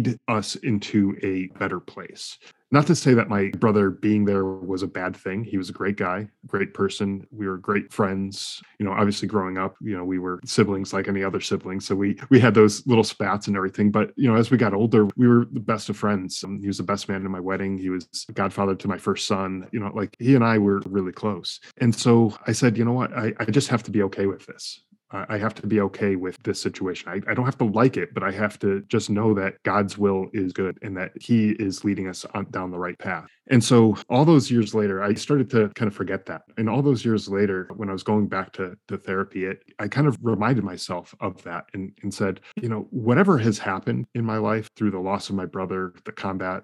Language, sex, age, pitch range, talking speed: English, male, 20-39, 95-115 Hz, 250 wpm